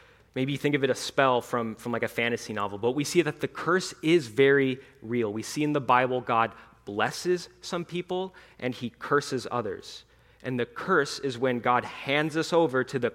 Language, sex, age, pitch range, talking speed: English, male, 30-49, 115-140 Hz, 210 wpm